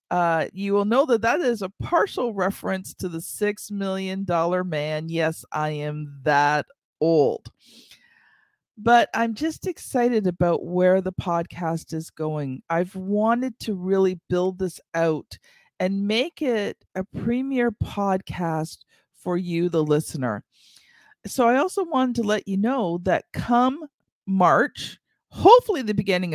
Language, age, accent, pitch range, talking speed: English, 50-69, American, 170-235 Hz, 140 wpm